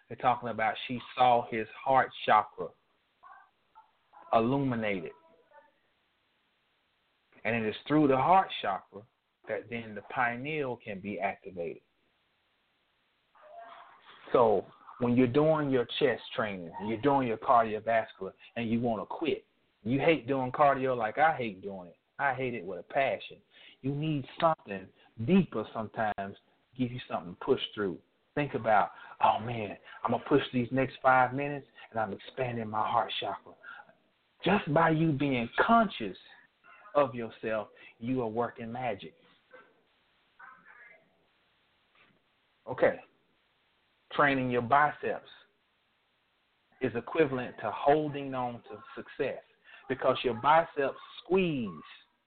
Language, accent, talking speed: English, American, 125 wpm